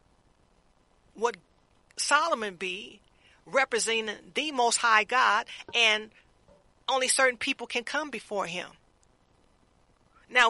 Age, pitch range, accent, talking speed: 40-59, 210-280 Hz, American, 95 wpm